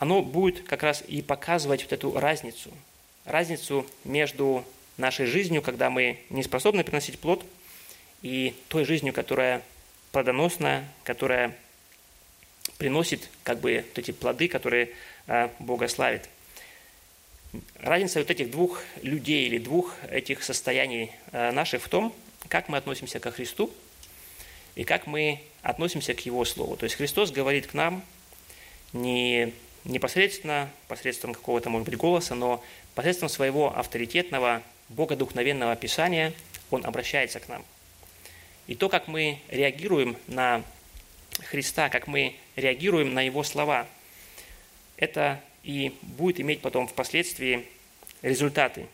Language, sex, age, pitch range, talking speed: Russian, male, 20-39, 120-150 Hz, 120 wpm